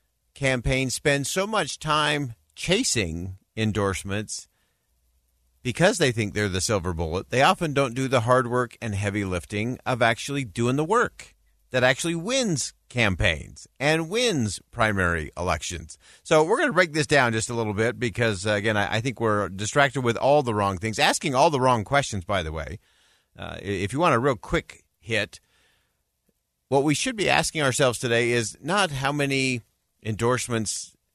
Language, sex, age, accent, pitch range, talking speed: English, male, 50-69, American, 100-135 Hz, 170 wpm